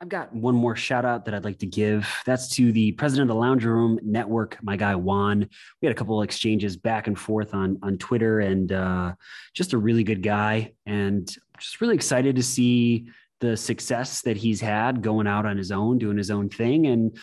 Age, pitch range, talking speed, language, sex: 30-49, 105-120 Hz, 220 wpm, English, male